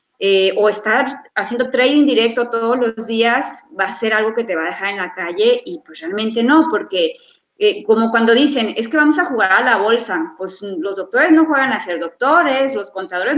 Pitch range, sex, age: 215-285 Hz, female, 30-49